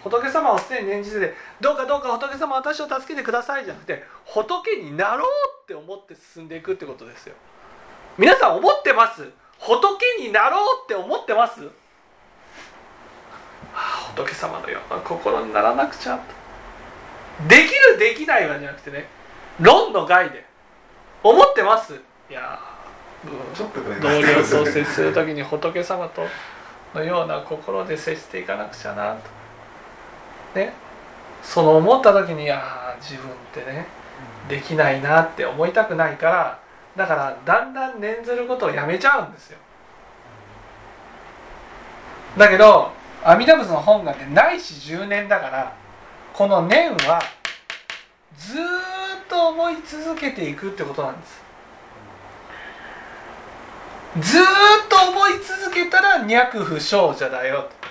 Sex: male